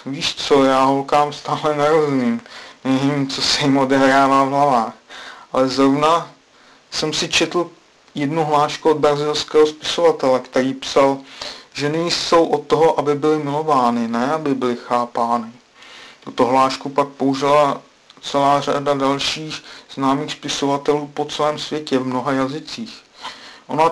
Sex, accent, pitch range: male, native, 135-150 Hz